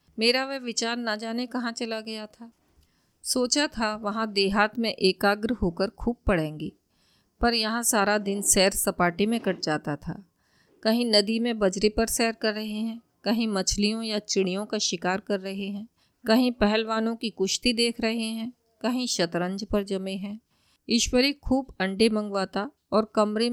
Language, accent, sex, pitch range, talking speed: Hindi, native, female, 195-230 Hz, 165 wpm